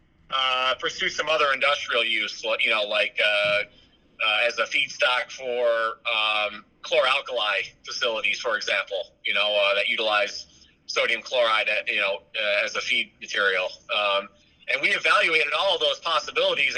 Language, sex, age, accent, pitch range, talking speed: English, male, 30-49, American, 105-150 Hz, 150 wpm